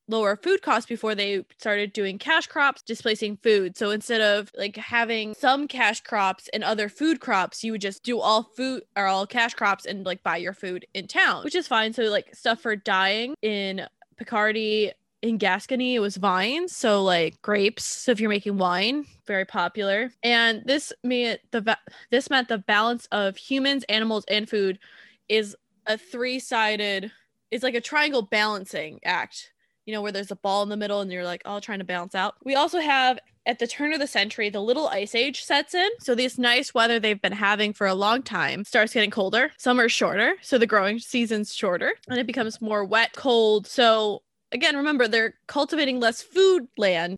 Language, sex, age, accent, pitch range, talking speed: English, female, 20-39, American, 205-250 Hz, 195 wpm